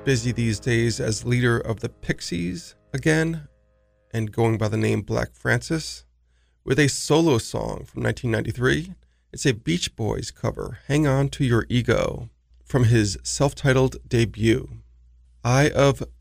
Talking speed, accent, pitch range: 140 wpm, American, 100-130 Hz